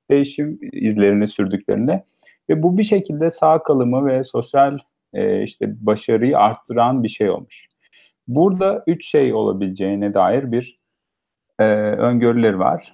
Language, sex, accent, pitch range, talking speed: Turkish, male, native, 110-150 Hz, 125 wpm